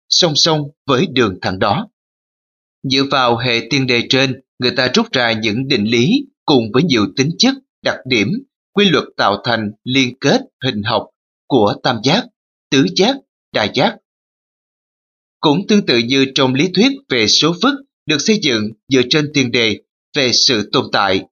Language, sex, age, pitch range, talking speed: Vietnamese, male, 20-39, 115-195 Hz, 175 wpm